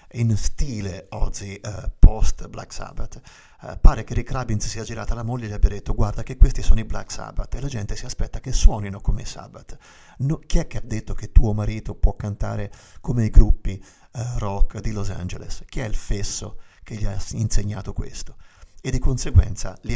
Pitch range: 100-115 Hz